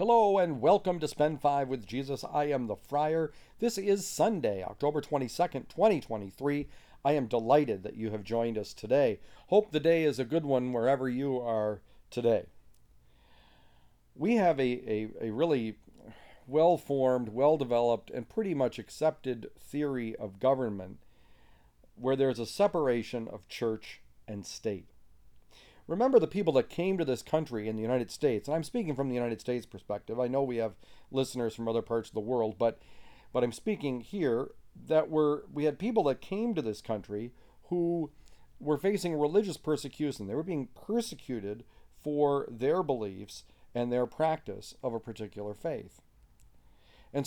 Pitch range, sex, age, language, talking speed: 115-155 Hz, male, 40-59, English, 165 wpm